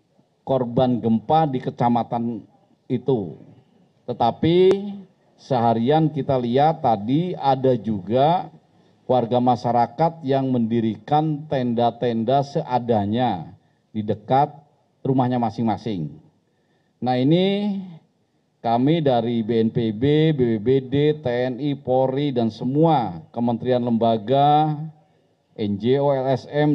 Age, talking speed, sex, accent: 40-59, 80 wpm, male, native